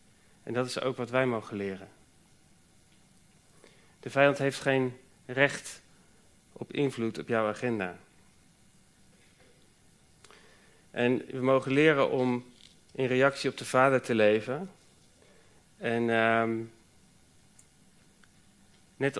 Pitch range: 115-135 Hz